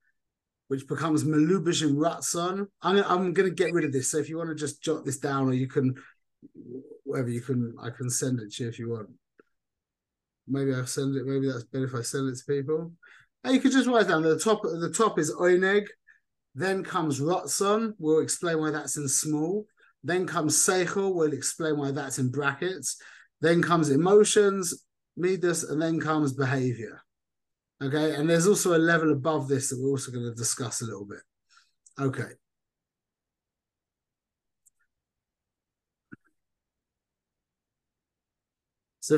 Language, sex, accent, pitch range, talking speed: English, male, British, 135-175 Hz, 165 wpm